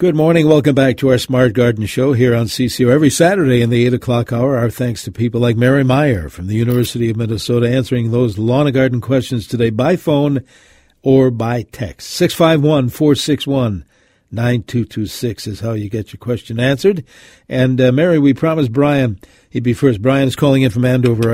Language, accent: English, American